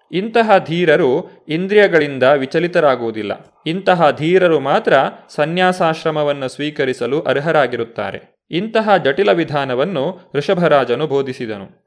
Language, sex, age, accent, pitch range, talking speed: Kannada, male, 20-39, native, 130-165 Hz, 75 wpm